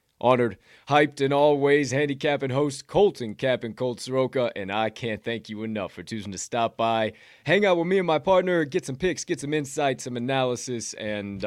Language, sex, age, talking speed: English, male, 20-39, 195 wpm